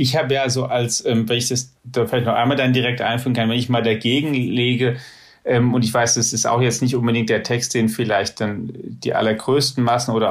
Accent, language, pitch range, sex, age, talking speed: German, German, 115-130 Hz, male, 30-49, 245 wpm